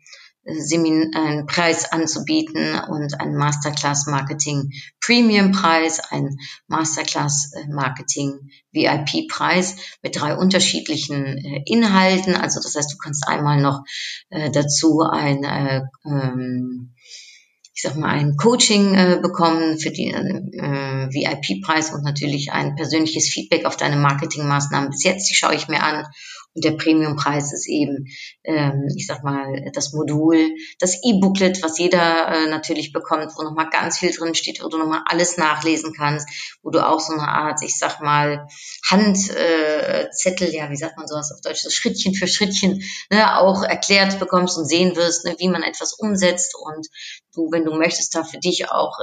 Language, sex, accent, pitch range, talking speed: German, female, German, 145-175 Hz, 140 wpm